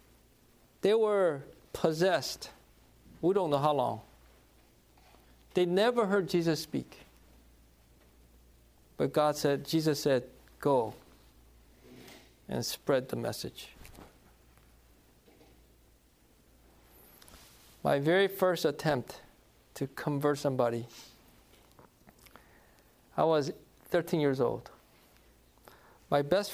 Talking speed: 85 wpm